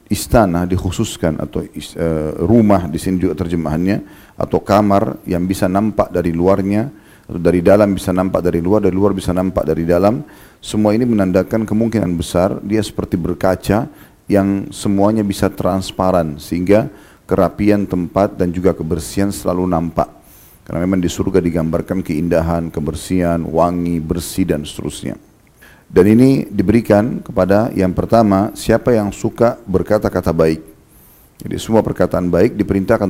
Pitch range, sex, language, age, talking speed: 85-100 Hz, male, Indonesian, 40-59, 135 wpm